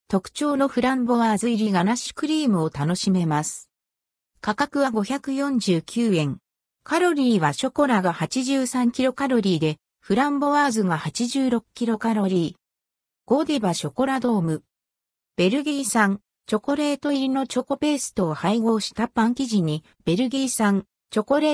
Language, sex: Japanese, female